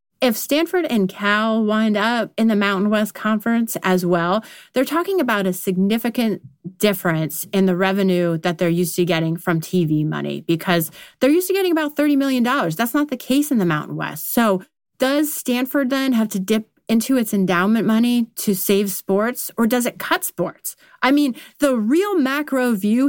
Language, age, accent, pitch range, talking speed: English, 30-49, American, 180-260 Hz, 185 wpm